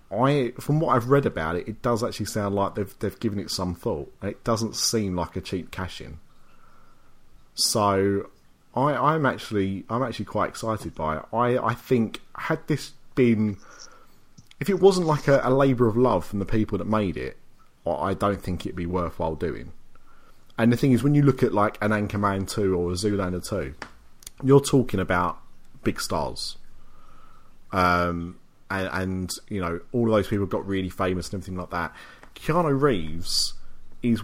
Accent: British